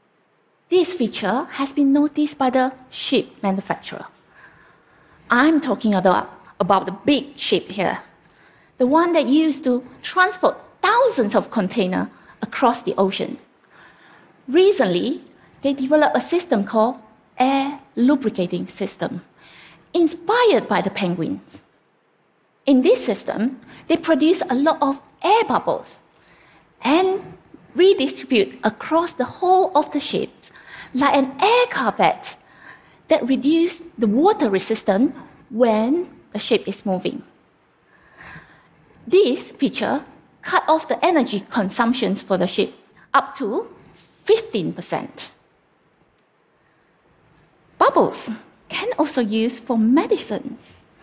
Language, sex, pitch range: Korean, female, 220-325 Hz